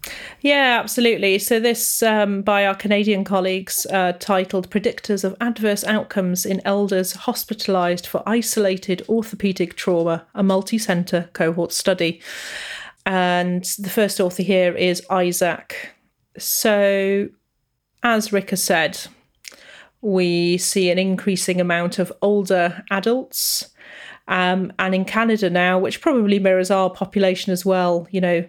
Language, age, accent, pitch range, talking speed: English, 30-49, British, 180-210 Hz, 125 wpm